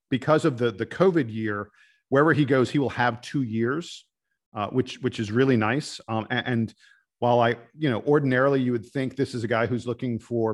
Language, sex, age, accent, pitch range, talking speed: English, male, 50-69, American, 115-140 Hz, 215 wpm